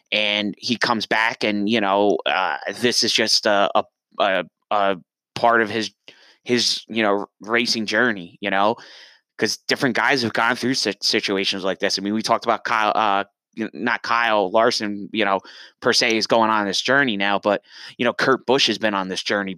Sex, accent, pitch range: male, American, 100-120 Hz